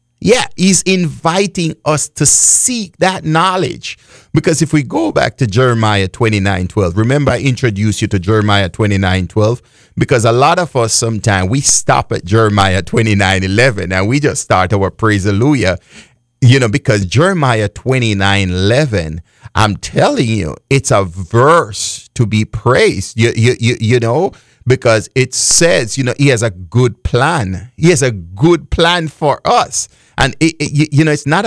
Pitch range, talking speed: 110-150 Hz, 170 wpm